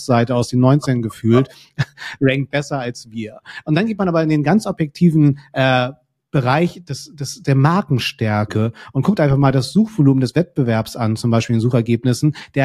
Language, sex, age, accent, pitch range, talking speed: German, male, 40-59, German, 120-145 Hz, 180 wpm